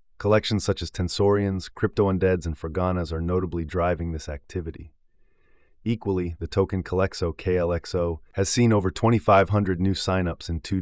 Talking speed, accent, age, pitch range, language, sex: 140 wpm, American, 30-49, 80-95 Hz, English, male